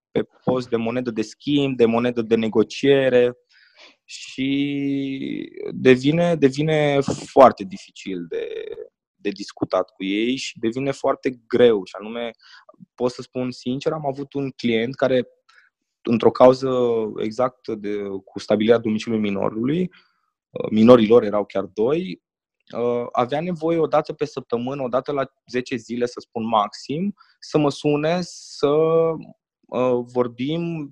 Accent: native